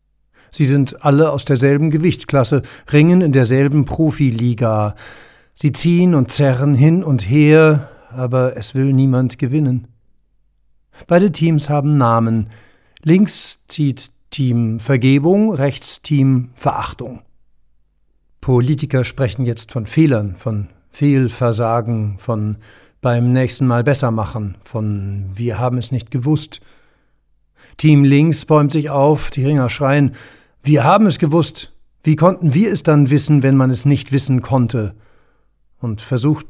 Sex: male